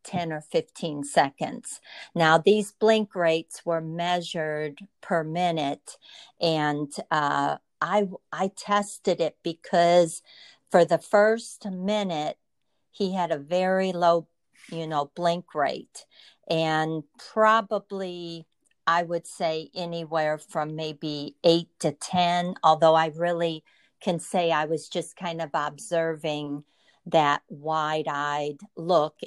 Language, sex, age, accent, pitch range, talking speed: English, female, 50-69, American, 155-180 Hz, 115 wpm